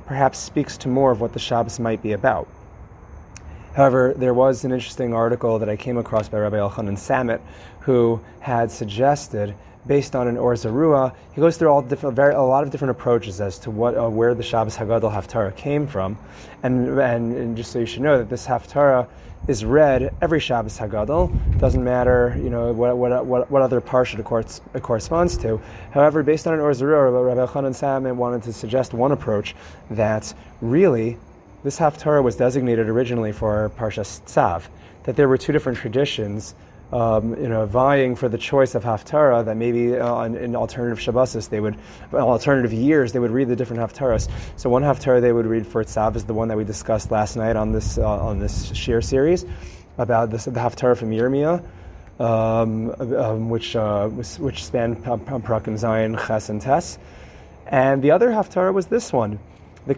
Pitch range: 110-130 Hz